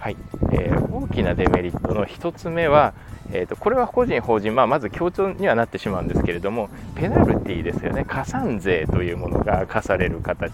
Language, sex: Japanese, male